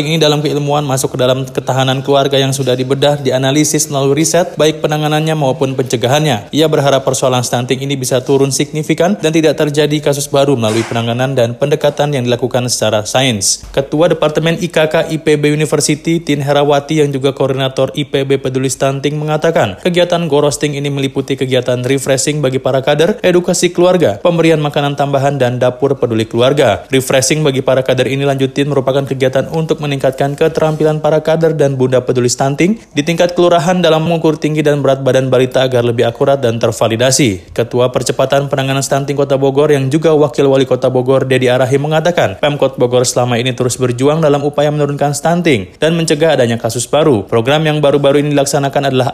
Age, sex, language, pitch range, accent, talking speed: 20-39, male, Indonesian, 130-150 Hz, native, 170 wpm